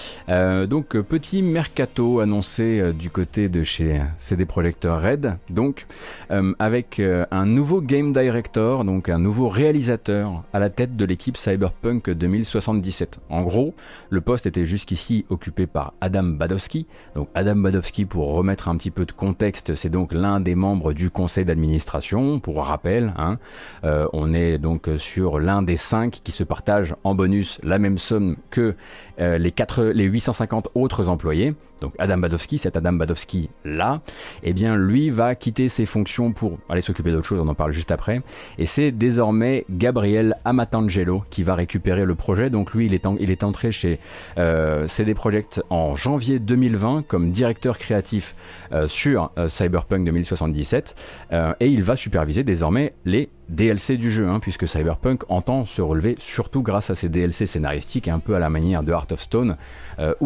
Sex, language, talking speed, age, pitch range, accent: male, French, 175 wpm, 30-49, 85-115 Hz, French